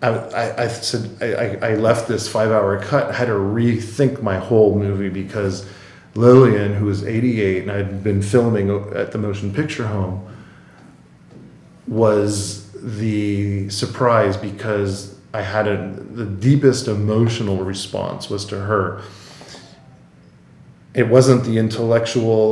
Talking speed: 130 wpm